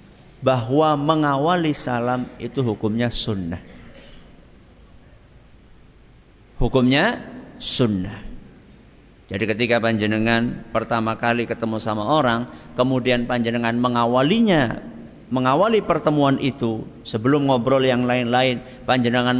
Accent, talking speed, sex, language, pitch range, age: native, 85 wpm, male, Indonesian, 115-145 Hz, 50-69